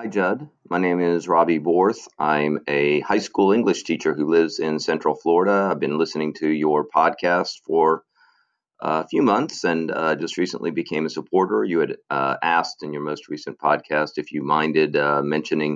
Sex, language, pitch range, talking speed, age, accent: male, English, 75-85 Hz, 185 wpm, 40-59, American